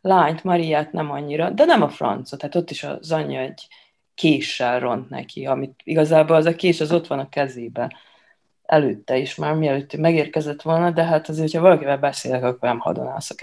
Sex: female